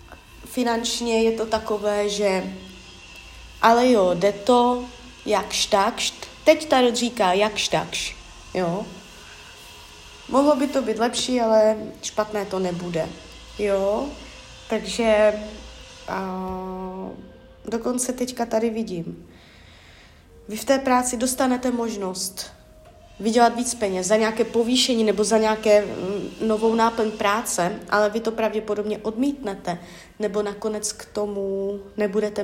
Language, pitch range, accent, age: Czech, 200-235 Hz, native, 30-49